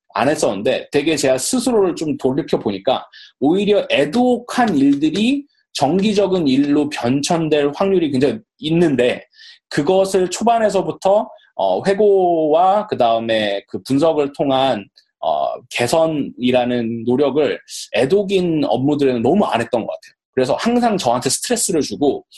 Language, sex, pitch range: Korean, male, 125-200 Hz